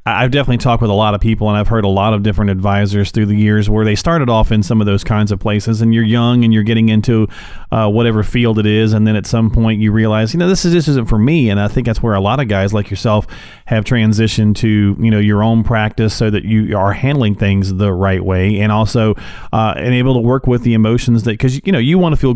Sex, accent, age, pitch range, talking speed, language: male, American, 30-49, 105-130 Hz, 280 wpm, English